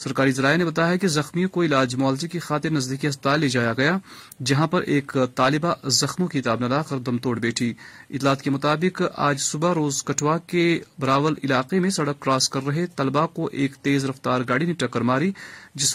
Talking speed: 200 wpm